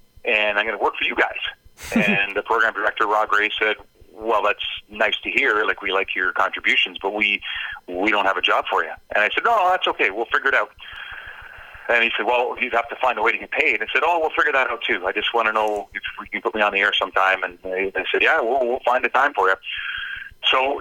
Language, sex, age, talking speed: English, male, 40-59, 260 wpm